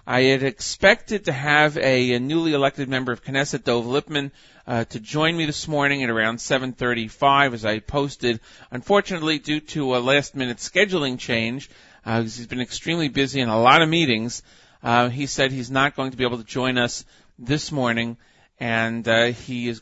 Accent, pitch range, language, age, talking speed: American, 120-150 Hz, English, 40-59, 190 wpm